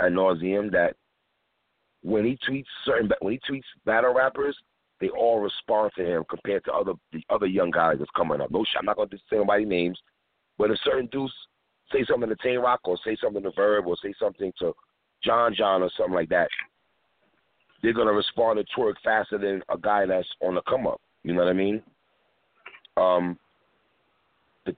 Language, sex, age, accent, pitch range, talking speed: English, male, 40-59, American, 90-115 Hz, 195 wpm